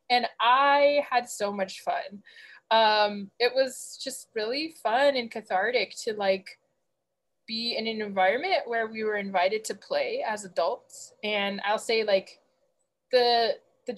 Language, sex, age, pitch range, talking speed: English, female, 20-39, 205-260 Hz, 145 wpm